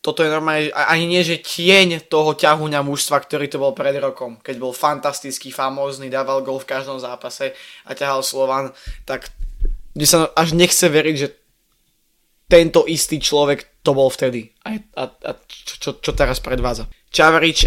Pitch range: 135-155 Hz